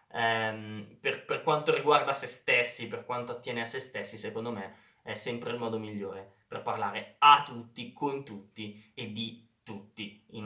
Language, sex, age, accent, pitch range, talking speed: Italian, male, 20-39, native, 110-145 Hz, 165 wpm